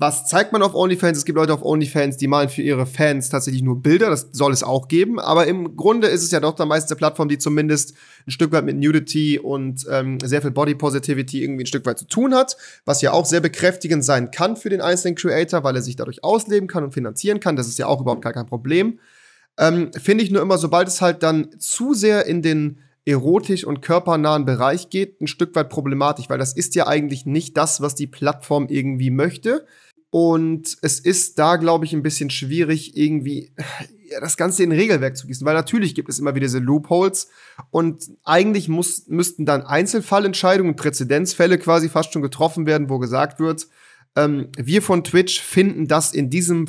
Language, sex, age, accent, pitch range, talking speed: German, male, 30-49, German, 140-175 Hz, 210 wpm